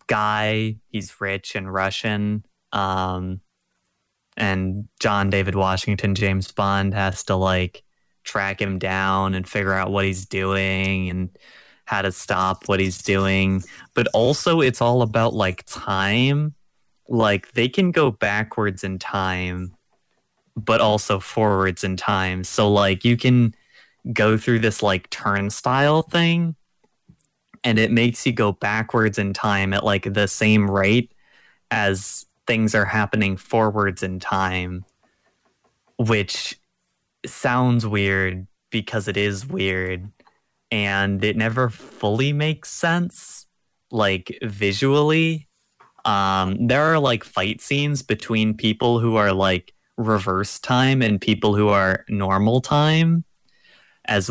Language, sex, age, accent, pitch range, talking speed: English, male, 20-39, American, 95-115 Hz, 125 wpm